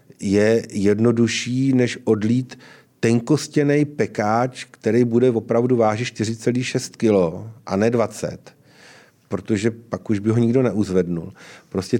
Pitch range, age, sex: 100-120 Hz, 40-59, male